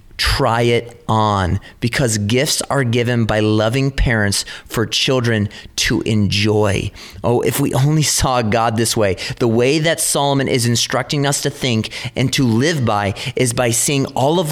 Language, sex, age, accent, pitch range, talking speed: English, male, 30-49, American, 105-130 Hz, 165 wpm